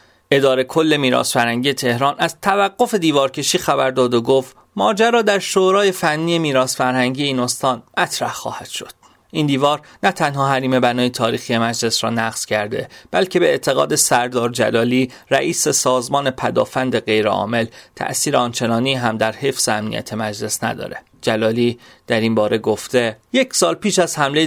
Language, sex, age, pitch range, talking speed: Persian, male, 30-49, 125-165 Hz, 155 wpm